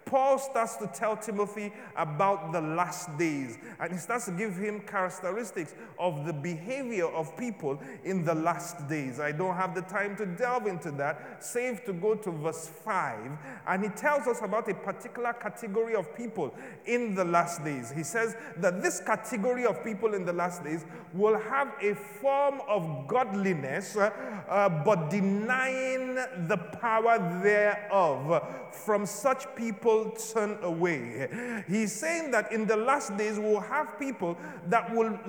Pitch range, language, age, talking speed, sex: 185-235 Hz, English, 30-49, 160 wpm, male